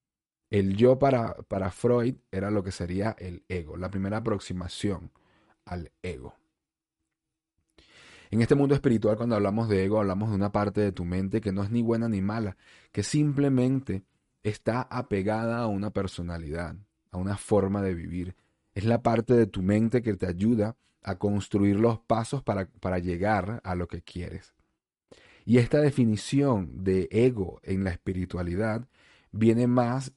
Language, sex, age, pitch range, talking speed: Spanish, male, 30-49, 95-115 Hz, 160 wpm